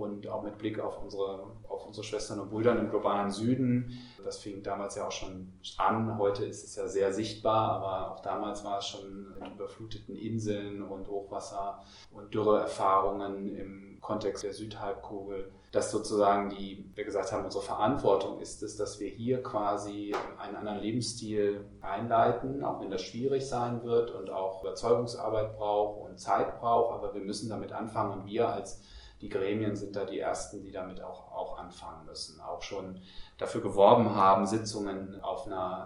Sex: male